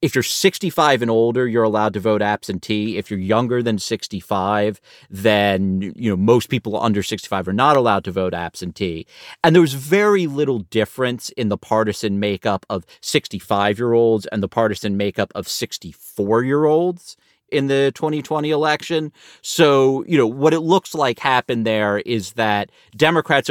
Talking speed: 170 wpm